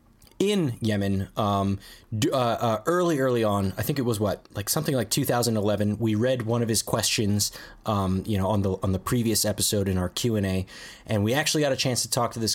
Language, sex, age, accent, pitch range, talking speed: English, male, 20-39, American, 100-120 Hz, 215 wpm